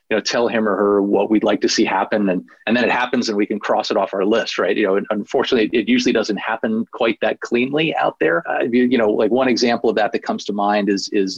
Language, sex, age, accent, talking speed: English, male, 30-49, American, 280 wpm